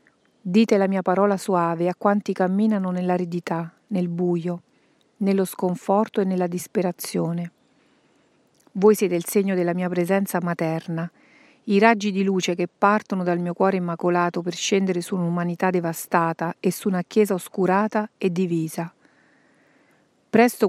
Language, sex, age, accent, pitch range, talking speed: Italian, female, 40-59, native, 175-210 Hz, 135 wpm